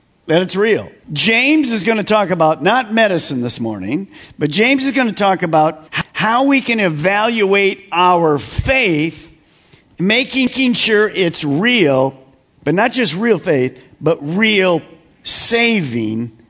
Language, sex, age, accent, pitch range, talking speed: English, male, 50-69, American, 160-225 Hz, 140 wpm